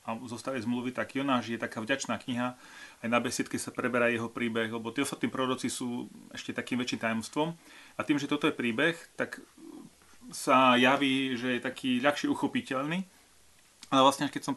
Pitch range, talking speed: 120-135 Hz, 180 wpm